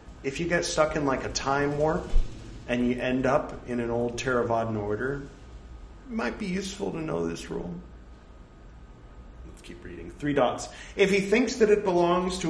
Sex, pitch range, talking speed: male, 125-175 Hz, 180 wpm